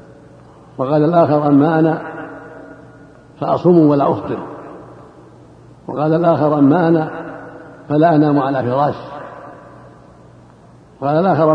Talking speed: 90 wpm